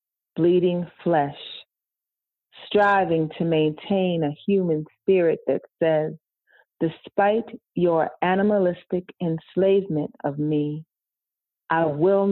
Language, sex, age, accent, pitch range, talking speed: English, female, 40-59, American, 155-190 Hz, 90 wpm